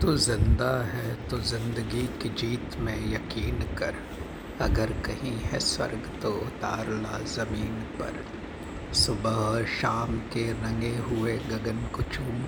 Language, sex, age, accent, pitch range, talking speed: Hindi, male, 60-79, native, 105-115 Hz, 125 wpm